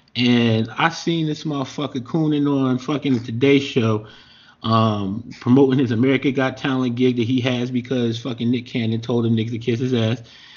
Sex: male